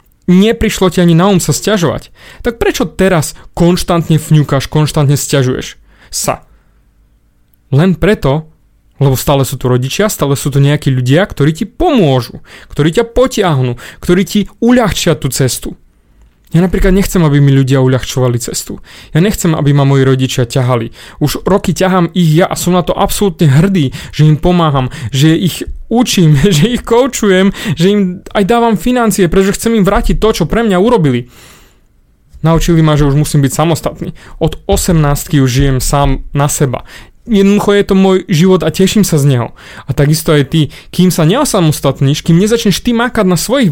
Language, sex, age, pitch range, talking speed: Slovak, male, 30-49, 140-190 Hz, 170 wpm